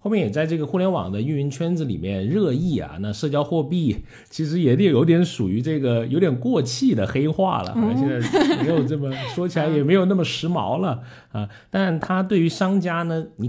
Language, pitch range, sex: Chinese, 105-155 Hz, male